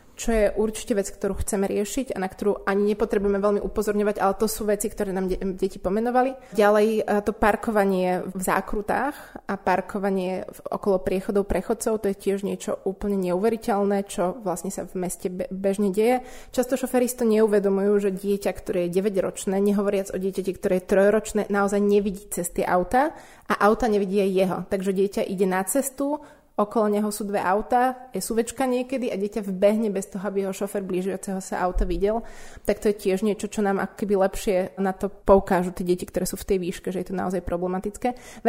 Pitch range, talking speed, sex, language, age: 190-225 Hz, 190 wpm, female, Slovak, 20-39